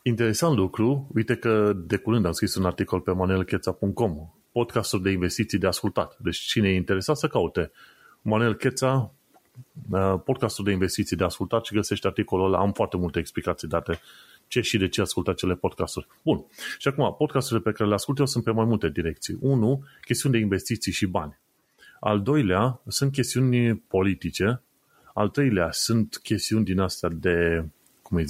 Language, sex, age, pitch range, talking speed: Romanian, male, 30-49, 95-120 Hz, 170 wpm